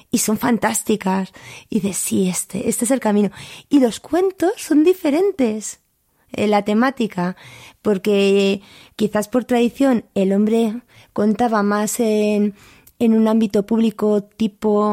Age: 20-39